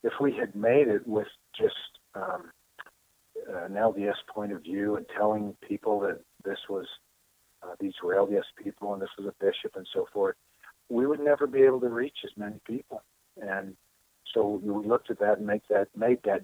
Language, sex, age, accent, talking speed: English, male, 50-69, American, 195 wpm